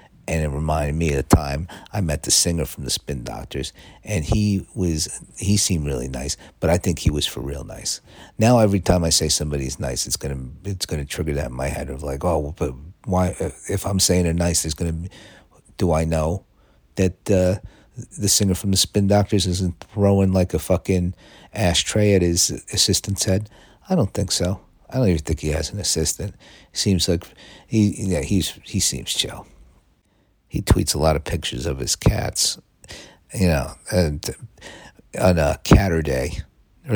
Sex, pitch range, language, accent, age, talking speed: male, 75-95 Hz, English, American, 50-69, 195 wpm